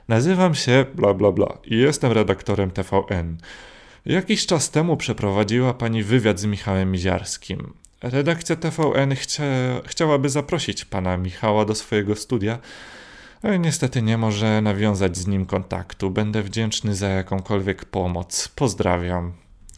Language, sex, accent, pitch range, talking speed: Polish, male, native, 95-115 Hz, 125 wpm